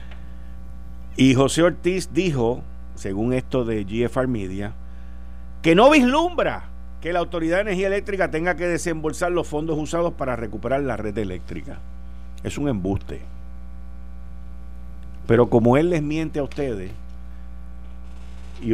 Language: Spanish